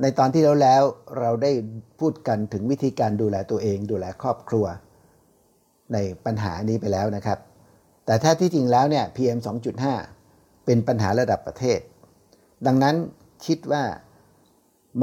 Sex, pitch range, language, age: male, 105-130 Hz, Thai, 60-79